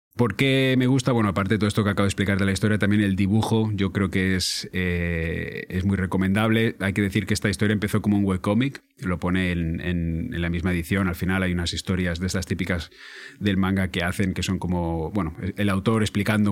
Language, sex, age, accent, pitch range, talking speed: Spanish, male, 30-49, Spanish, 95-110 Hz, 235 wpm